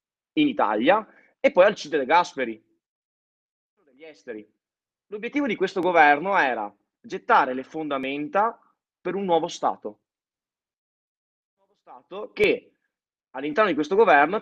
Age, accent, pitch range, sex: 20-39, native, 140-225 Hz, male